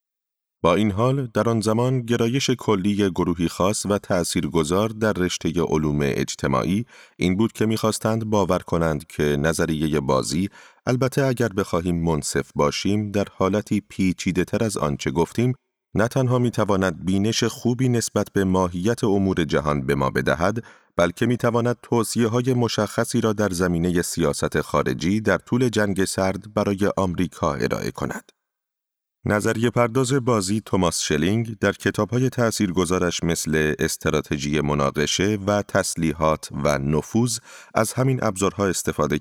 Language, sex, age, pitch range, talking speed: Persian, male, 30-49, 85-115 Hz, 130 wpm